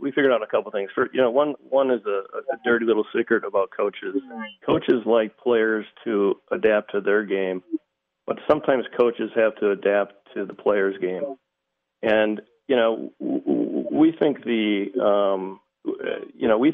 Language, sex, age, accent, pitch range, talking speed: English, male, 40-59, American, 100-120 Hz, 170 wpm